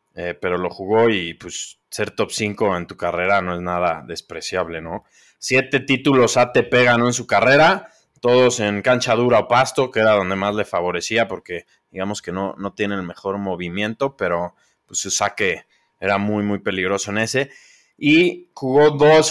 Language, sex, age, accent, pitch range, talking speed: Spanish, male, 20-39, Mexican, 105-135 Hz, 185 wpm